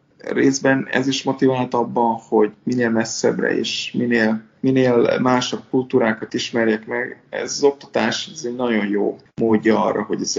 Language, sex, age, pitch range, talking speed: Hungarian, male, 20-39, 110-125 Hz, 150 wpm